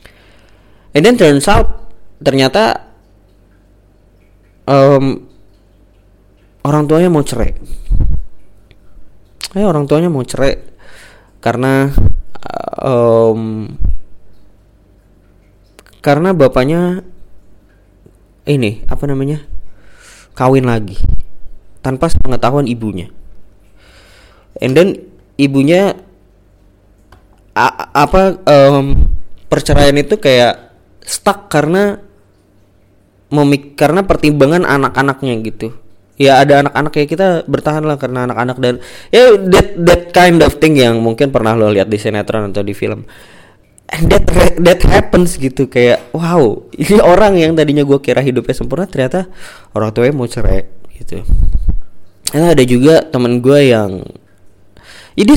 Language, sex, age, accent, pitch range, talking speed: Indonesian, male, 20-39, native, 100-145 Hz, 105 wpm